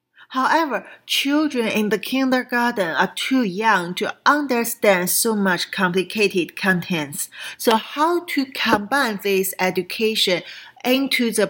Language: English